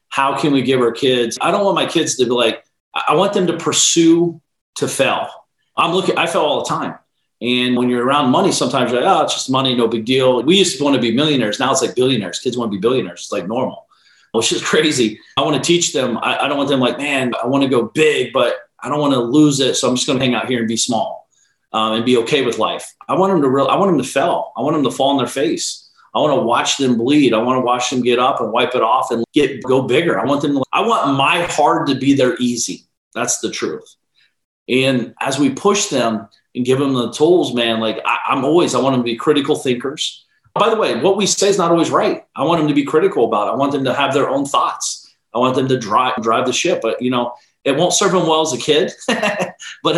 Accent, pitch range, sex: American, 125-150 Hz, male